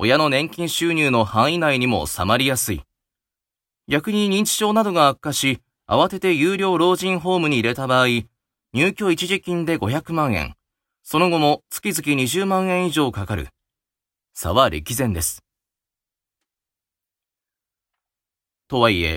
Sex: male